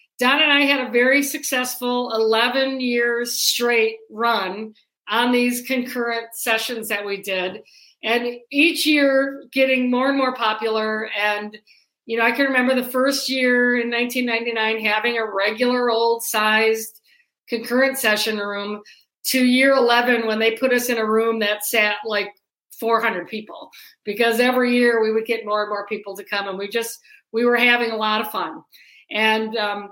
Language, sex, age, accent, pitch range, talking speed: English, female, 50-69, American, 220-255 Hz, 165 wpm